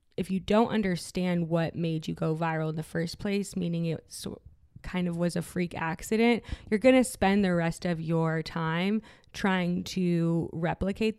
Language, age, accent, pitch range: English, 20-39, American, 165-190 Hz